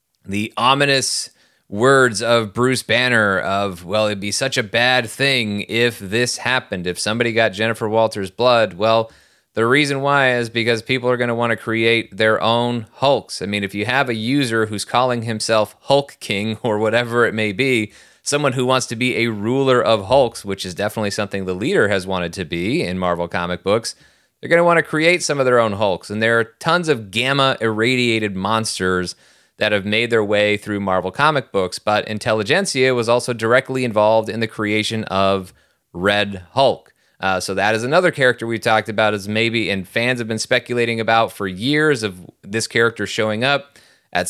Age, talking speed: 30-49, 195 wpm